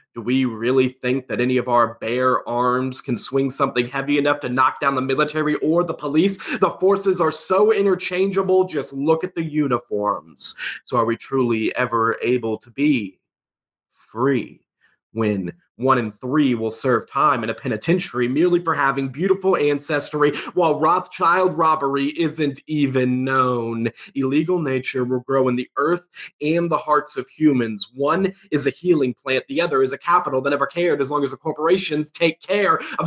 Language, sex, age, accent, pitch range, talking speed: English, male, 20-39, American, 125-175 Hz, 175 wpm